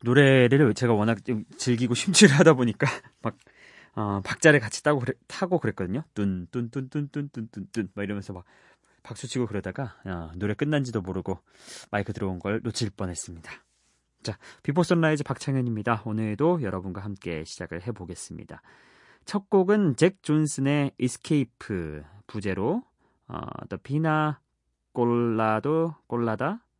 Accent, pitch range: native, 105-155 Hz